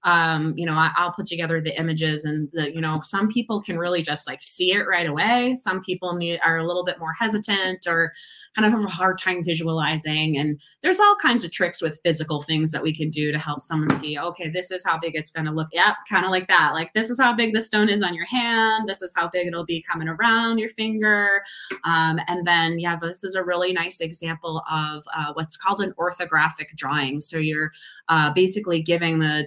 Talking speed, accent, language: 230 wpm, American, English